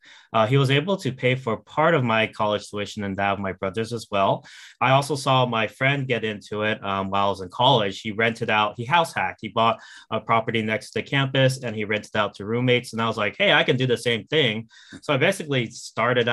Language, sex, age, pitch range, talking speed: English, male, 20-39, 105-125 Hz, 245 wpm